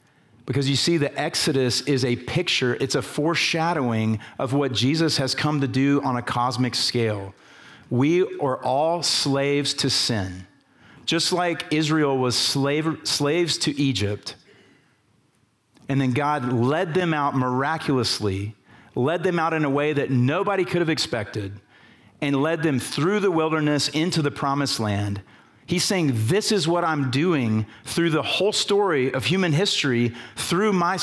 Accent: American